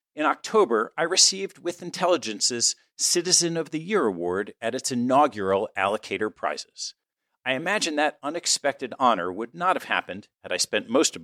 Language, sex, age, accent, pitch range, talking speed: English, male, 50-69, American, 120-195 Hz, 160 wpm